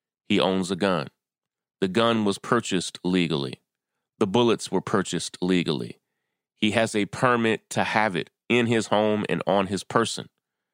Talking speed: 155 wpm